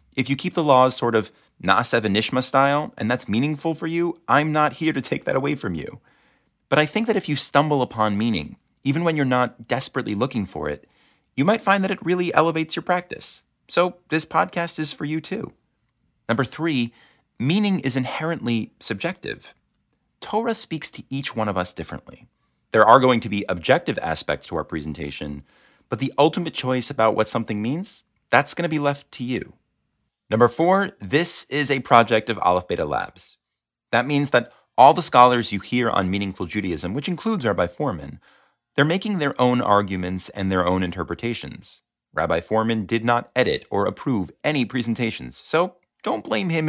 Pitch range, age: 105-160 Hz, 30-49